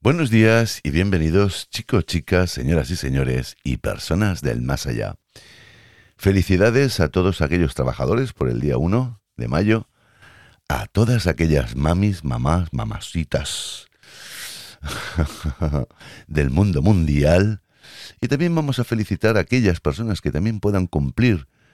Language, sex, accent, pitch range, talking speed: Spanish, male, Spanish, 75-100 Hz, 125 wpm